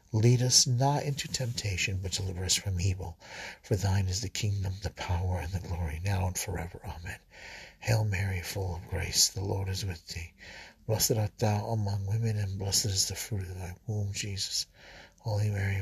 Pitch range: 95-105 Hz